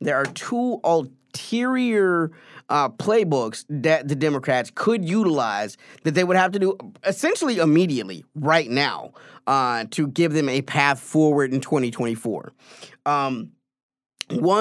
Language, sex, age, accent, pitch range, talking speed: English, male, 30-49, American, 140-180 Hz, 125 wpm